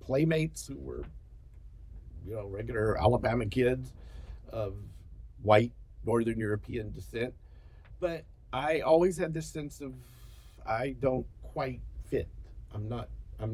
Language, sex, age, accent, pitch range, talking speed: English, male, 50-69, American, 95-135 Hz, 120 wpm